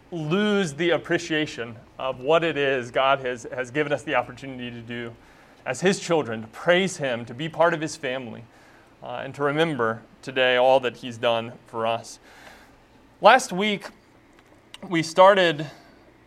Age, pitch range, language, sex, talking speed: 30-49, 140-195 Hz, English, male, 160 wpm